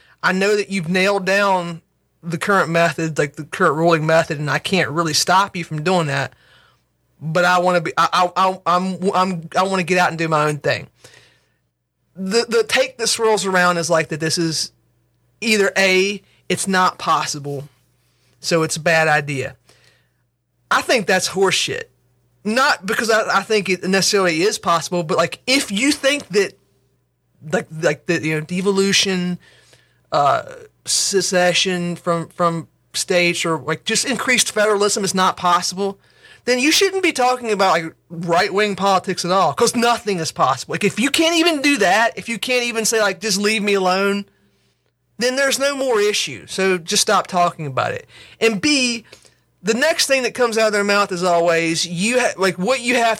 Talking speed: 185 wpm